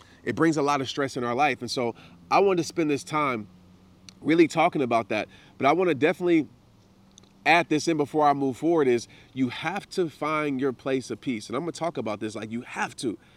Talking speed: 240 wpm